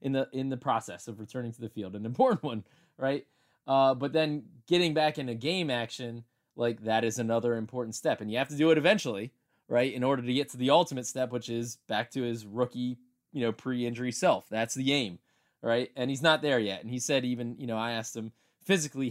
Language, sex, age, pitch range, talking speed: English, male, 20-39, 115-145 Hz, 230 wpm